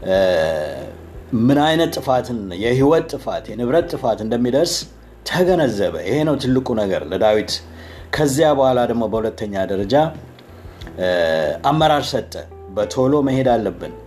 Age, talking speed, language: 60-79, 100 wpm, Amharic